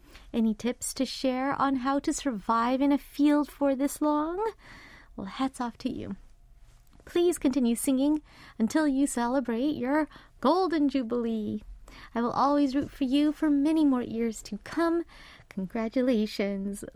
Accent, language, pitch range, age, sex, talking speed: American, English, 230-290 Hz, 30-49, female, 145 wpm